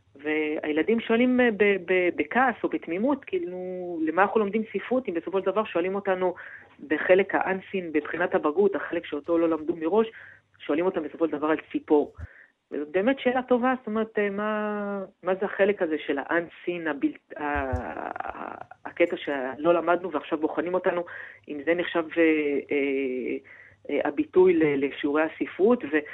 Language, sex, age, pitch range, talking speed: Hebrew, female, 40-59, 150-190 Hz, 130 wpm